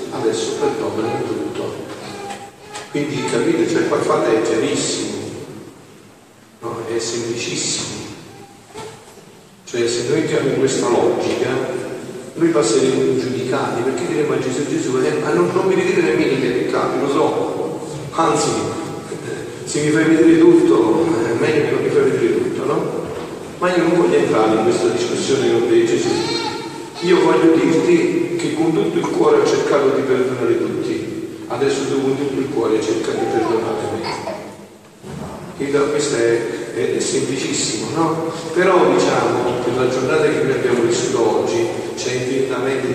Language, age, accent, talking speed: Italian, 50-69, native, 150 wpm